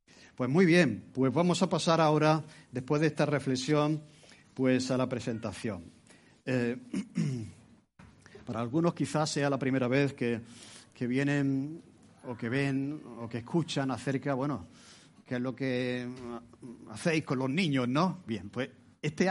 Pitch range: 125-155 Hz